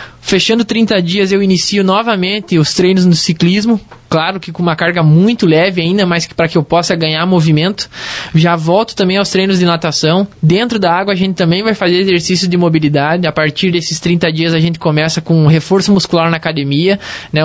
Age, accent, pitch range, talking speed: 20-39, Brazilian, 165-195 Hz, 200 wpm